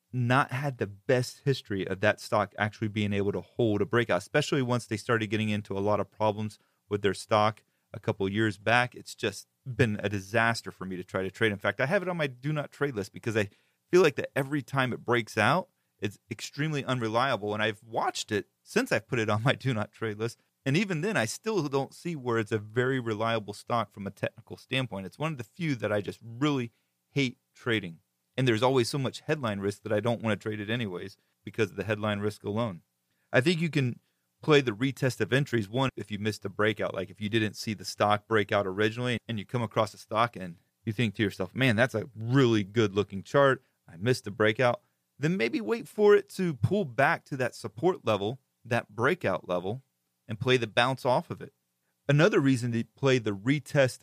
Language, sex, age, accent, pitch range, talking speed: English, male, 30-49, American, 105-130 Hz, 225 wpm